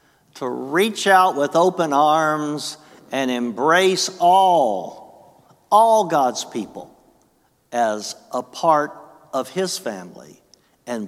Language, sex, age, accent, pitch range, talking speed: English, male, 60-79, American, 110-155 Hz, 105 wpm